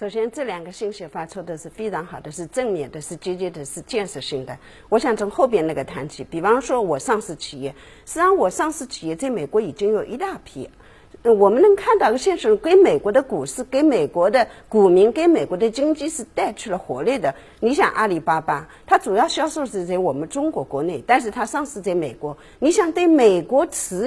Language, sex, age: Chinese, female, 50-69